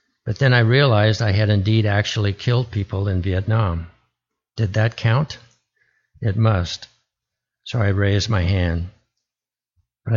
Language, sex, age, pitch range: English, male, 60-79, 95-115 Hz